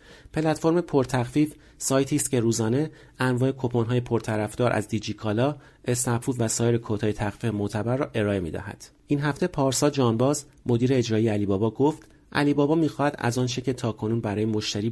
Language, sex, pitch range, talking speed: Persian, male, 105-140 Hz, 170 wpm